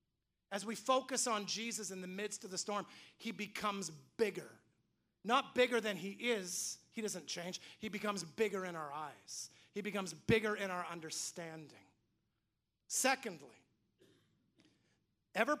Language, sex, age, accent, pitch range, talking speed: English, male, 30-49, American, 180-250 Hz, 135 wpm